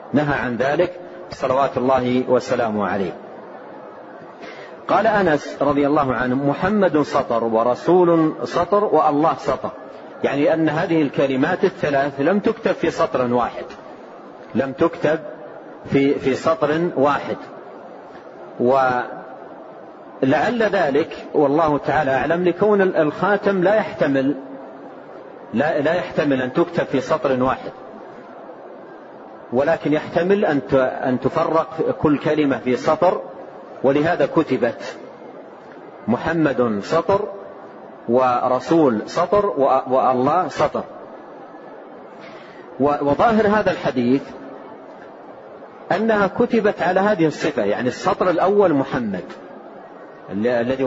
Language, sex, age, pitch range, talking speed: Arabic, male, 40-59, 130-170 Hz, 95 wpm